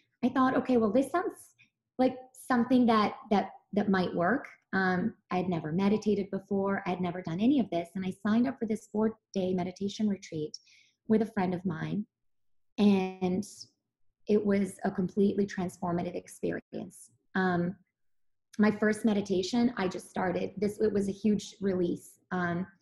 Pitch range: 180-210 Hz